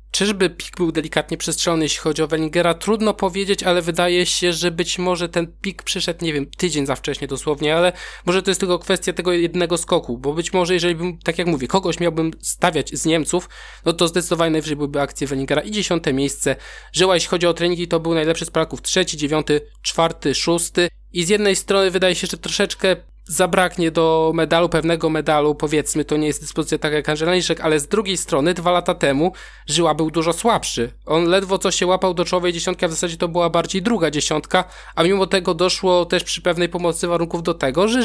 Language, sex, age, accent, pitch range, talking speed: Polish, male, 20-39, native, 155-180 Hz, 210 wpm